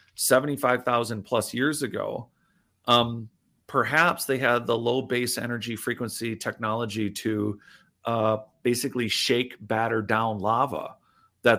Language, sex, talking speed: English, male, 115 wpm